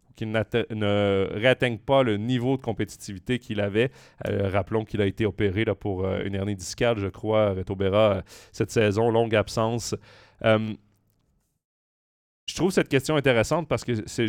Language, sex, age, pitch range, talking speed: French, male, 30-49, 105-125 Hz, 165 wpm